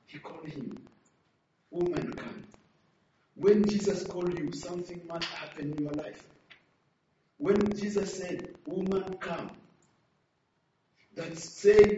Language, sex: English, male